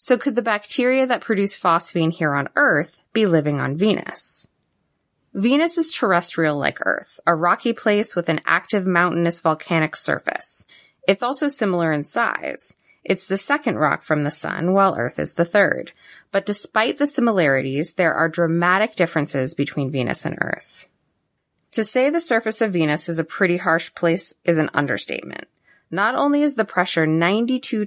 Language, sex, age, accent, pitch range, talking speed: English, female, 20-39, American, 160-220 Hz, 165 wpm